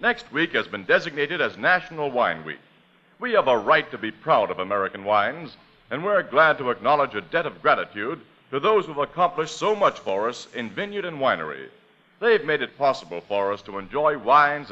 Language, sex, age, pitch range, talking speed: English, male, 60-79, 135-180 Hz, 200 wpm